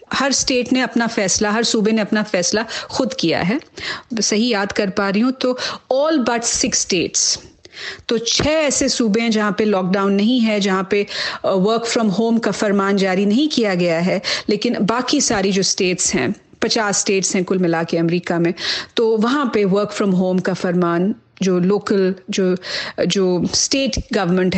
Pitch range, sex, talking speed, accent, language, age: 190-230 Hz, female, 180 wpm, native, Hindi, 40-59